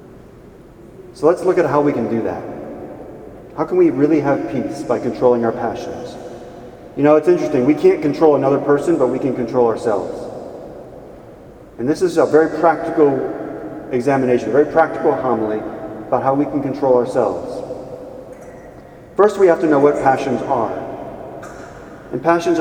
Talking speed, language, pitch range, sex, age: 160 wpm, English, 130-165 Hz, male, 40-59